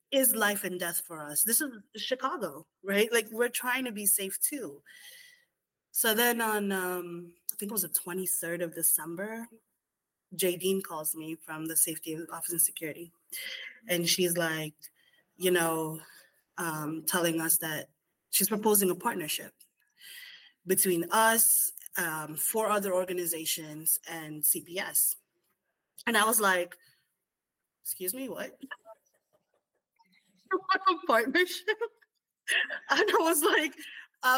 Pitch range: 175-265 Hz